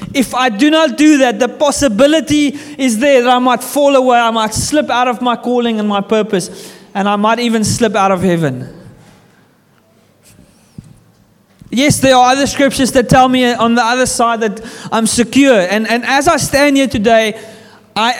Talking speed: 185 wpm